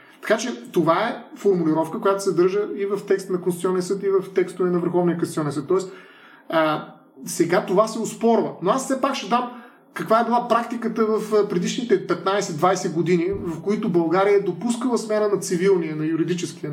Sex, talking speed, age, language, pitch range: male, 185 wpm, 30-49, Bulgarian, 165-220 Hz